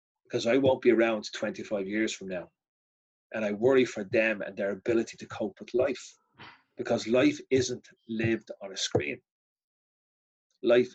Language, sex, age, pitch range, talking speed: English, male, 30-49, 115-130 Hz, 160 wpm